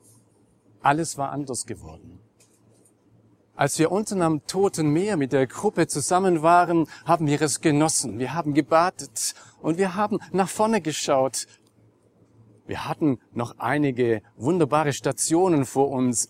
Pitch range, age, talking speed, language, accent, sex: 110-150 Hz, 40-59, 135 wpm, German, German, male